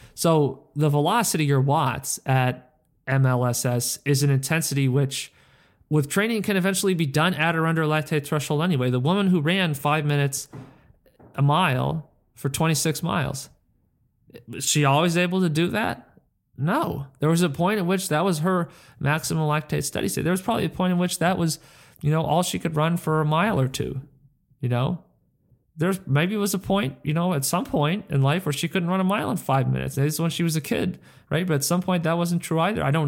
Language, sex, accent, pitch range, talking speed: English, male, American, 135-165 Hz, 210 wpm